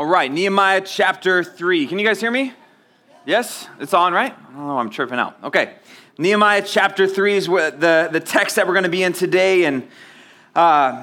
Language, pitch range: English, 150-190 Hz